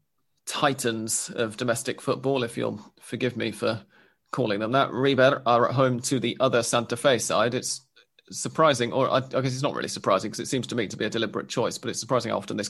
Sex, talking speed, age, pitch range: male, 225 wpm, 30-49, 115-135 Hz